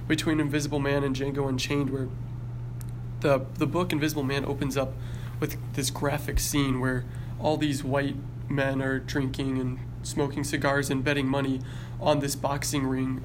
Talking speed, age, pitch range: 160 wpm, 20-39, 125-145 Hz